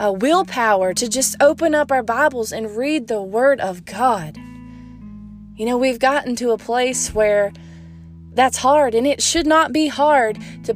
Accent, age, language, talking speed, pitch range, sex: American, 20-39, English, 175 wpm, 210-265 Hz, female